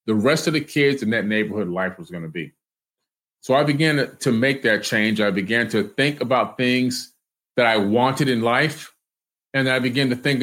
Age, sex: 30-49, male